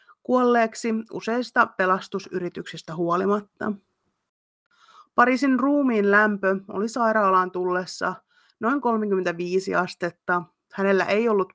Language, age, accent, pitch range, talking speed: Finnish, 30-49, native, 185-230 Hz, 85 wpm